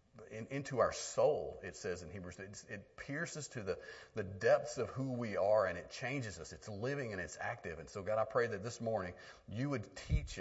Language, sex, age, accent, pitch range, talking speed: English, male, 40-59, American, 110-155 Hz, 215 wpm